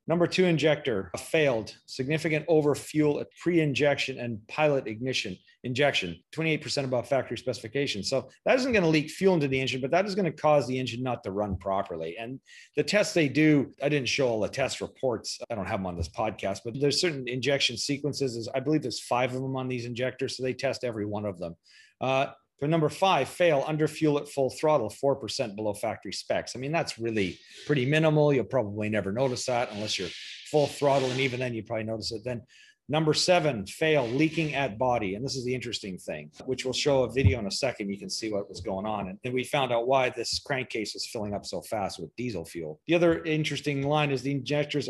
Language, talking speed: English, 220 wpm